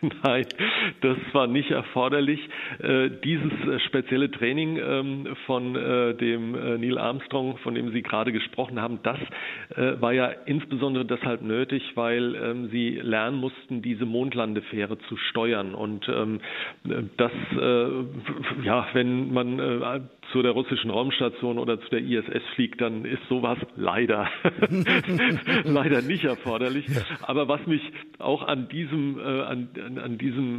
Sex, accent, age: male, German, 40-59